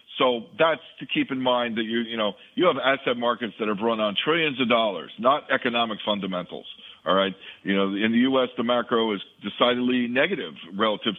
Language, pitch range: English, 110-140 Hz